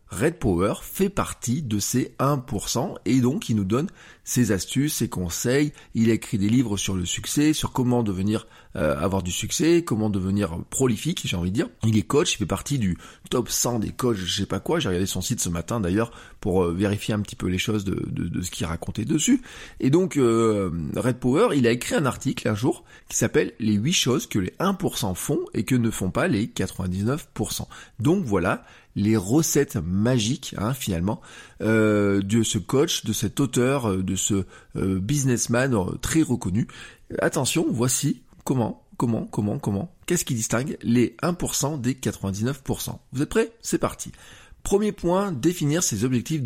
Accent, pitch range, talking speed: French, 105-145 Hz, 190 wpm